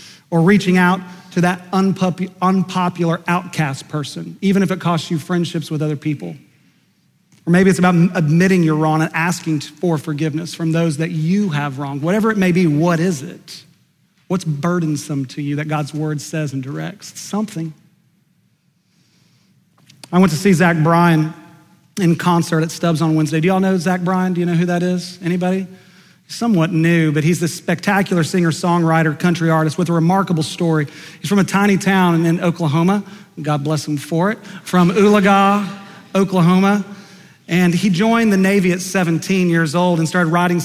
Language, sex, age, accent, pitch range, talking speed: English, male, 40-59, American, 160-185 Hz, 175 wpm